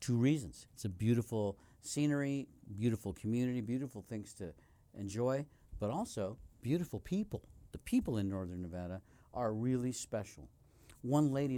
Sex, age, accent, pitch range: male, 50-69, American, 100-130 Hz